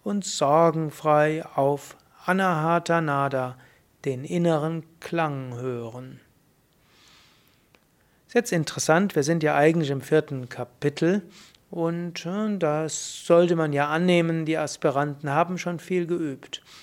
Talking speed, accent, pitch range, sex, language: 105 wpm, German, 150-185 Hz, male, German